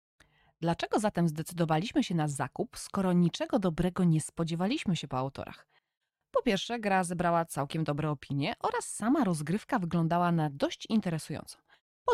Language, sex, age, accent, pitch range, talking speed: Polish, female, 20-39, native, 145-200 Hz, 145 wpm